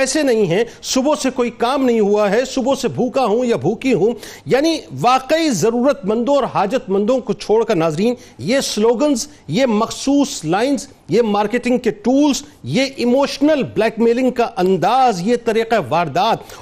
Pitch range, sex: 215-265 Hz, male